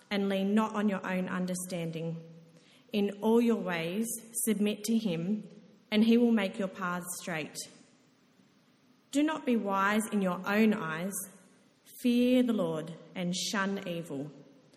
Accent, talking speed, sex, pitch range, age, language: Australian, 140 wpm, female, 185-245 Hz, 30-49, English